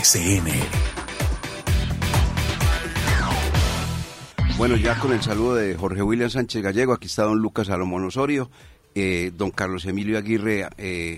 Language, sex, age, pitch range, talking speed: Spanish, male, 40-59, 90-105 Hz, 125 wpm